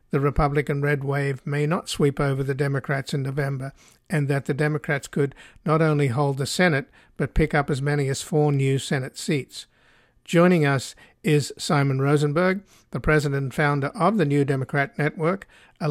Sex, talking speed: male, 175 wpm